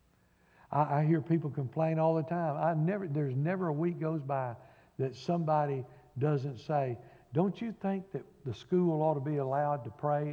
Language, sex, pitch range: English, male, 145-195 Hz